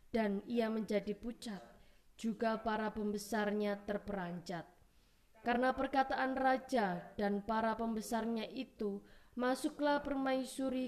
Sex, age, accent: female, 20-39, native